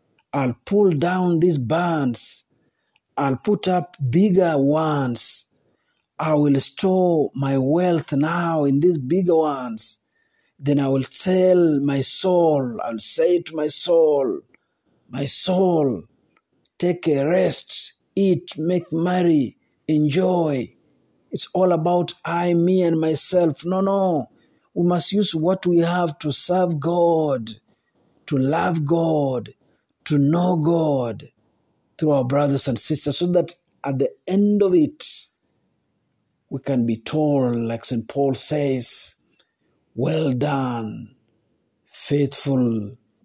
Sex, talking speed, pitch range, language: male, 120 wpm, 135-175 Hz, Swahili